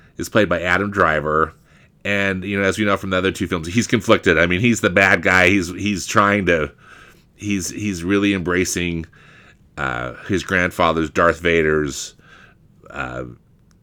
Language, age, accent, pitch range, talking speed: English, 30-49, American, 85-120 Hz, 165 wpm